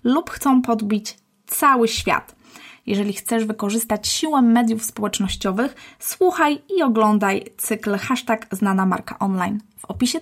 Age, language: 20-39, Polish